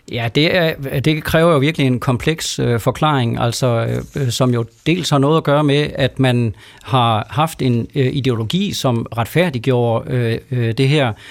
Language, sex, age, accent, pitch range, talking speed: Danish, male, 40-59, native, 120-150 Hz, 180 wpm